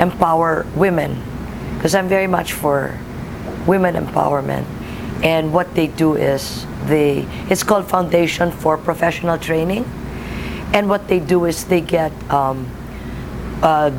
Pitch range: 155-190 Hz